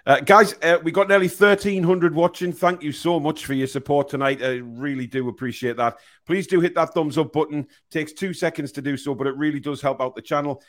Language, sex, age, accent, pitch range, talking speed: English, male, 40-59, British, 125-155 Hz, 235 wpm